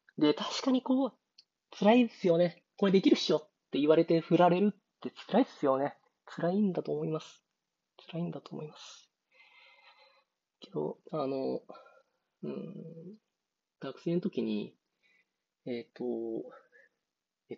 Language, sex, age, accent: Japanese, male, 30-49, native